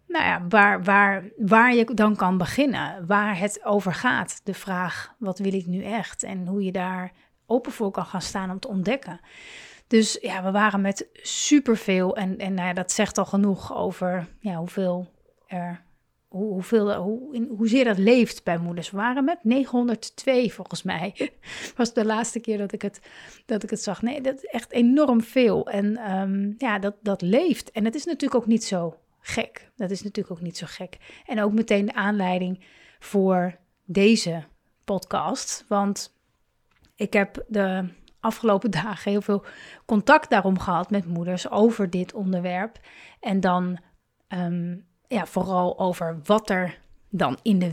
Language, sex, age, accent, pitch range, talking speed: Dutch, female, 30-49, Dutch, 185-225 Hz, 175 wpm